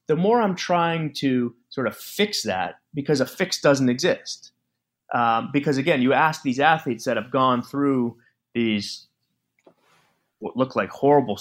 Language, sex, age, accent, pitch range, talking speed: English, male, 30-49, American, 120-155 Hz, 160 wpm